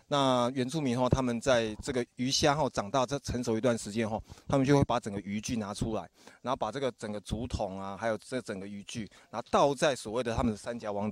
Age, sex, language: 20-39, male, Chinese